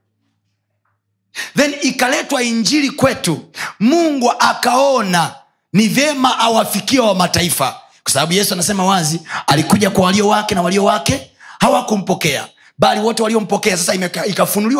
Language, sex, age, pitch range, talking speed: Swahili, male, 30-49, 145-225 Hz, 120 wpm